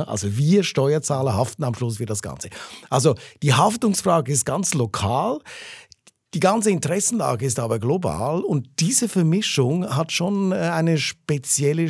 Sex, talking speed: male, 140 wpm